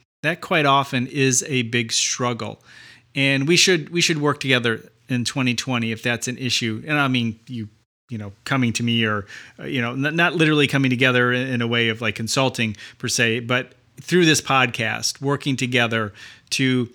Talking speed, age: 180 wpm, 30-49